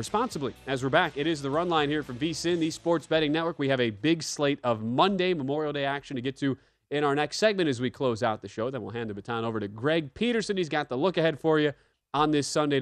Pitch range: 115-155 Hz